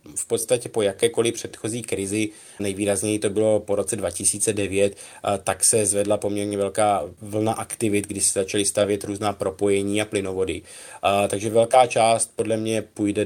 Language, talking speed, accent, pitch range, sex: Czech, 150 wpm, native, 100-120 Hz, male